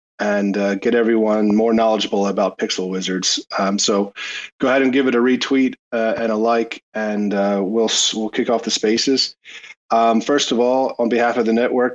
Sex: male